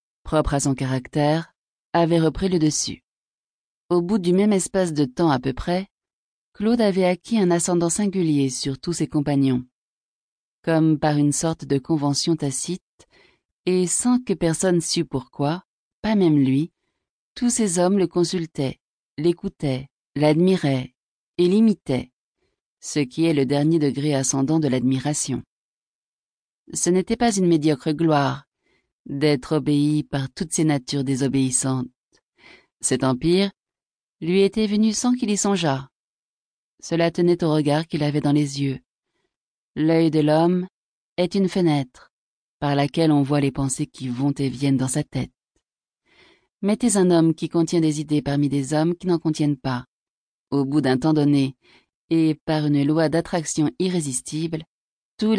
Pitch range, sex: 140-175 Hz, female